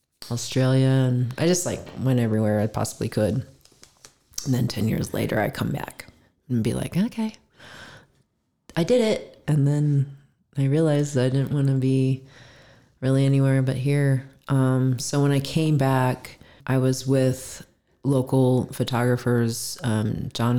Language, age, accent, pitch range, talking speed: English, 30-49, American, 115-135 Hz, 150 wpm